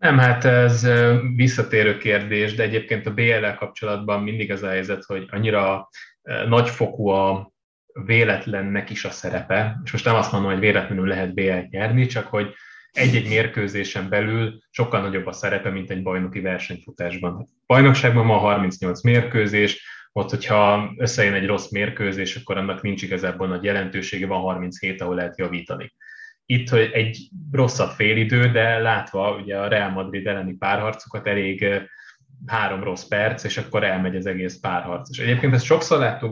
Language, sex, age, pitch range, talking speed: Hungarian, male, 20-39, 95-115 Hz, 155 wpm